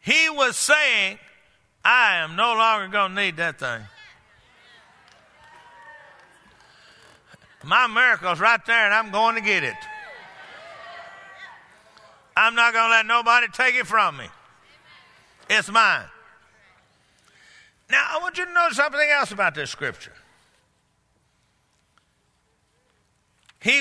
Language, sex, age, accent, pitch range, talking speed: English, male, 50-69, American, 175-275 Hz, 115 wpm